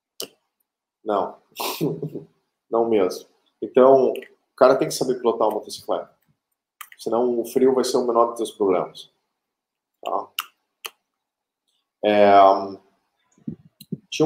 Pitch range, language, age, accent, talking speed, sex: 115-180 Hz, Portuguese, 20-39, Brazilian, 95 wpm, male